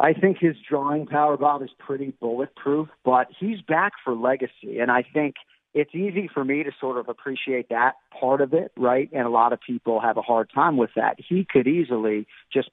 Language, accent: English, American